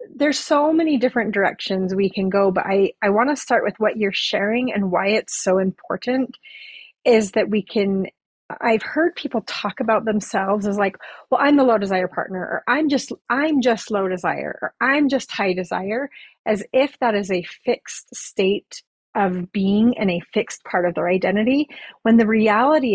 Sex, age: female, 30-49